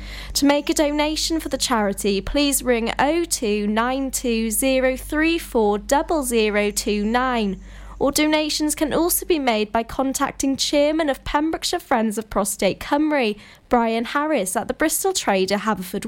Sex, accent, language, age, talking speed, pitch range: female, British, English, 10-29, 120 wpm, 235-295 Hz